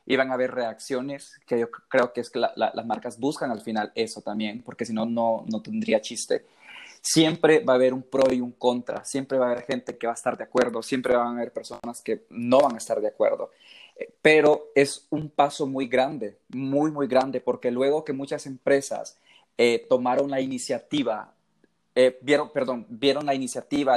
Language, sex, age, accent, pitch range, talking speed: Spanish, male, 20-39, Mexican, 125-140 Hz, 205 wpm